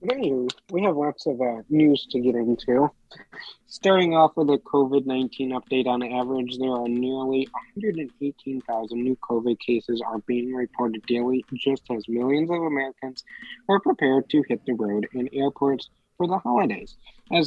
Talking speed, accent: 160 wpm, American